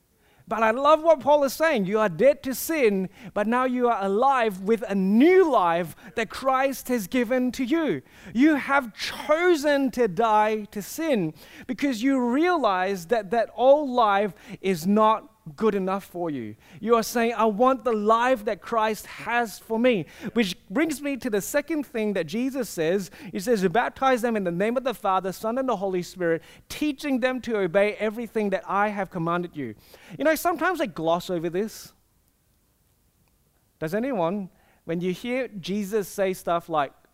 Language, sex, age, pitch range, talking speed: English, male, 30-49, 185-255 Hz, 180 wpm